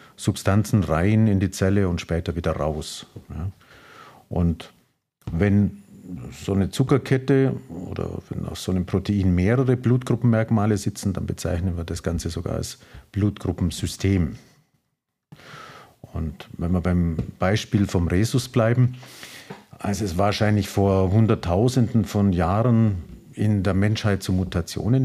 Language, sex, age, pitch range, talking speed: German, male, 50-69, 90-115 Hz, 120 wpm